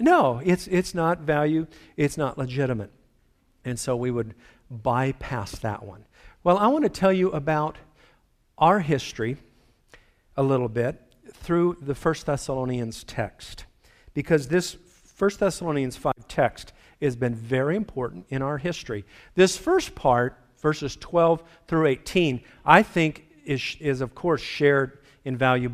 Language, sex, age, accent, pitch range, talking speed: English, male, 50-69, American, 125-165 Hz, 140 wpm